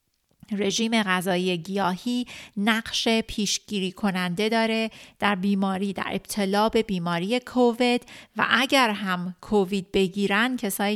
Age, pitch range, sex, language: 30-49, 190-220 Hz, female, Persian